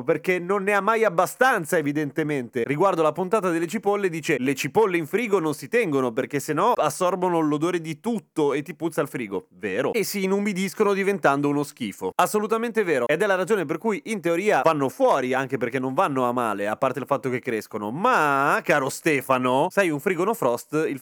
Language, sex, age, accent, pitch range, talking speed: Italian, male, 30-49, native, 130-205 Hz, 205 wpm